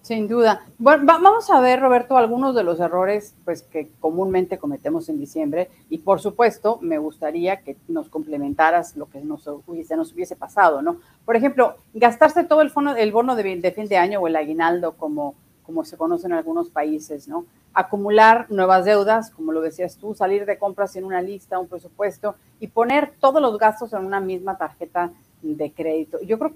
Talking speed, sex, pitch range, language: 190 wpm, female, 170-240 Hz, Spanish